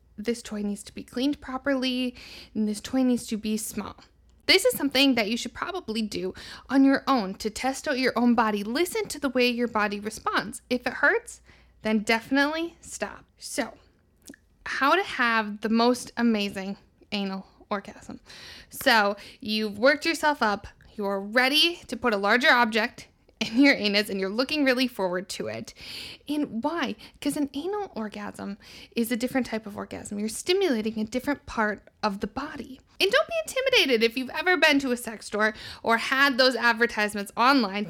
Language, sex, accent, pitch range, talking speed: English, female, American, 215-275 Hz, 175 wpm